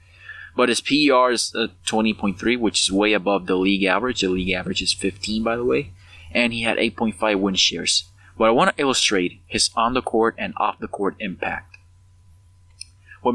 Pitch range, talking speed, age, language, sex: 90-110 Hz, 170 wpm, 20-39, English, male